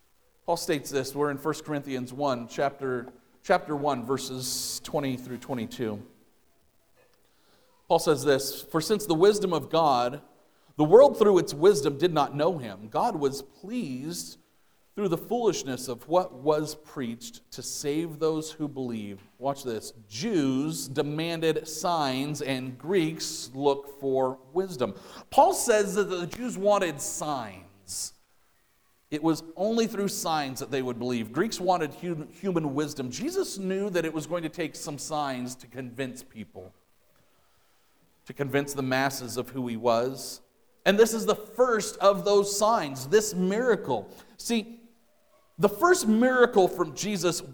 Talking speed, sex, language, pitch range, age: 145 wpm, male, English, 135-200 Hz, 40-59